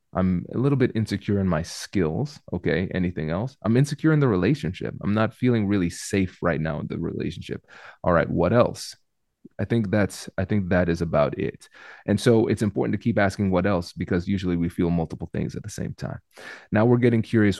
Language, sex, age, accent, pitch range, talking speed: English, male, 30-49, American, 90-110 Hz, 215 wpm